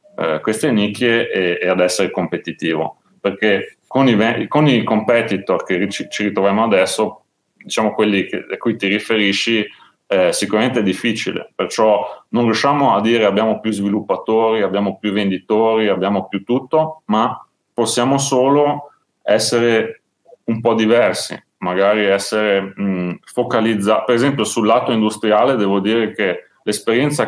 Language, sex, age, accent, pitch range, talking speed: Italian, male, 30-49, native, 100-120 Hz, 130 wpm